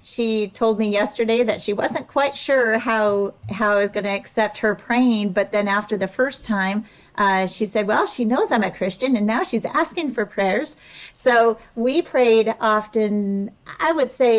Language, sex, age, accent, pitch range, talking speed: English, female, 40-59, American, 190-225 Hz, 190 wpm